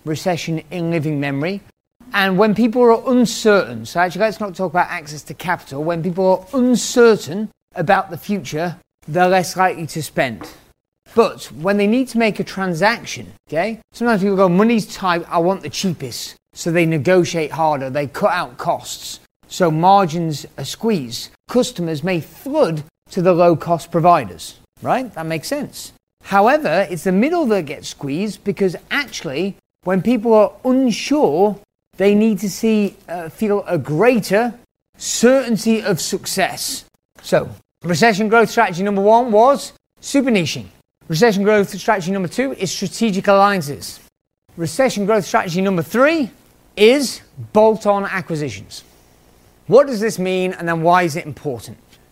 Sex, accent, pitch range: male, British, 160-215 Hz